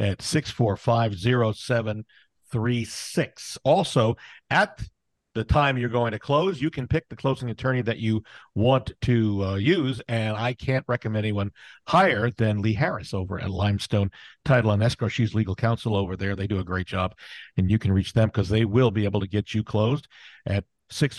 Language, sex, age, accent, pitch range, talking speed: English, male, 50-69, American, 100-130 Hz, 195 wpm